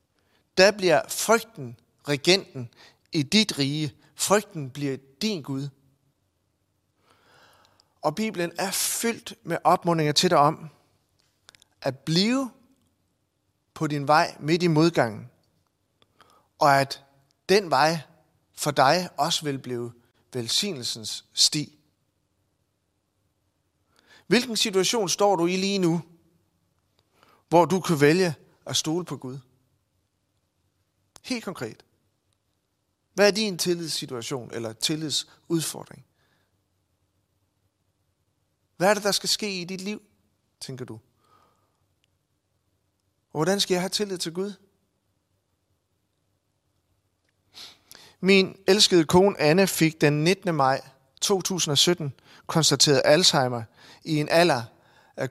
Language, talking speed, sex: Danish, 105 wpm, male